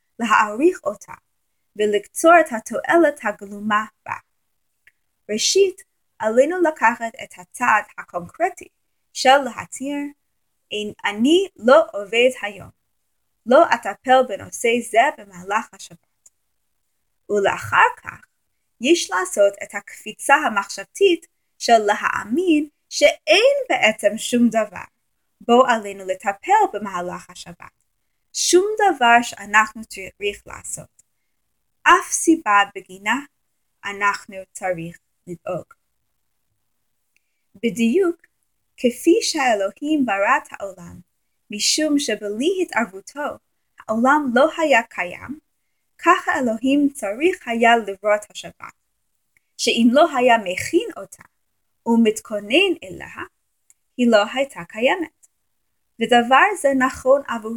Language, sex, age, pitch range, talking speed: English, female, 20-39, 205-310 Hz, 85 wpm